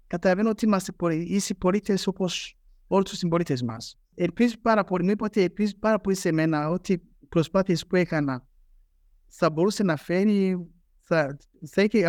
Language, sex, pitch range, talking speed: Greek, male, 155-190 Hz, 155 wpm